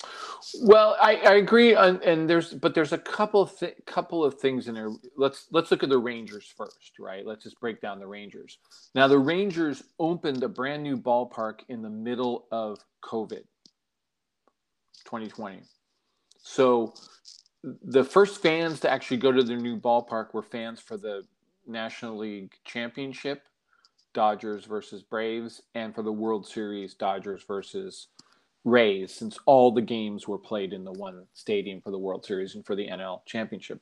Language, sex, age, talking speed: English, male, 40-59, 165 wpm